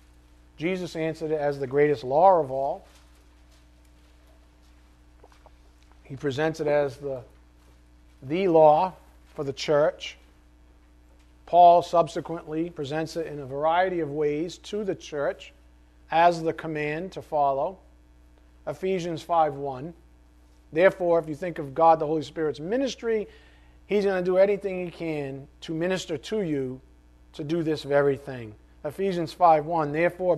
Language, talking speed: English, 130 wpm